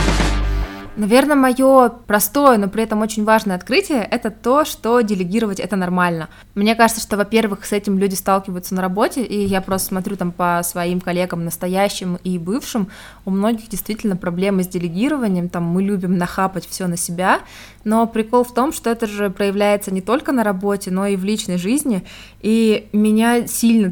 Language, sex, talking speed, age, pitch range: Russian, female, 175 wpm, 20-39, 185-220 Hz